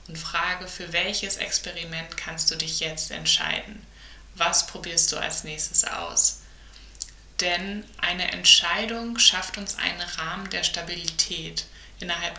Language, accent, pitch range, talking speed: German, German, 160-190 Hz, 120 wpm